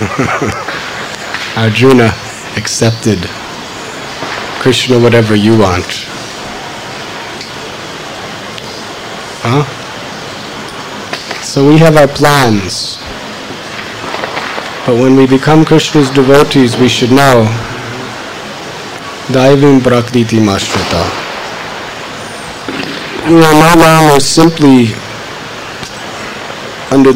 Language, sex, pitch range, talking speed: English, male, 110-140 Hz, 65 wpm